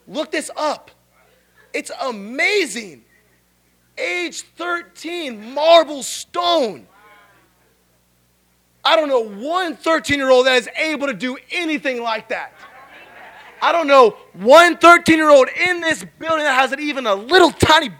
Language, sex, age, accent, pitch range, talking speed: English, male, 20-39, American, 250-325 Hz, 120 wpm